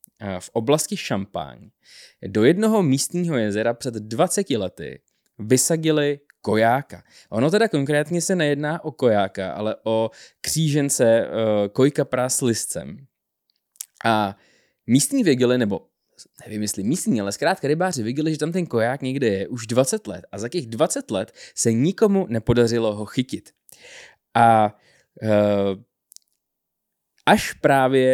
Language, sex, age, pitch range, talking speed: Czech, male, 20-39, 105-145 Hz, 130 wpm